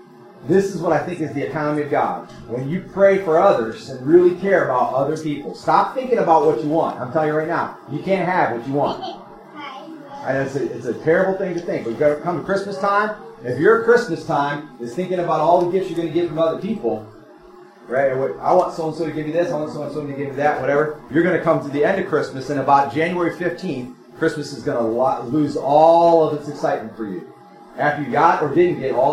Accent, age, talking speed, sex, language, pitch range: American, 40-59, 245 wpm, male, English, 140-175 Hz